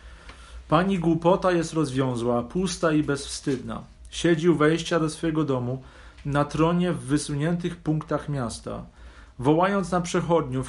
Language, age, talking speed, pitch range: Polish, 40-59, 120 wpm, 130-170 Hz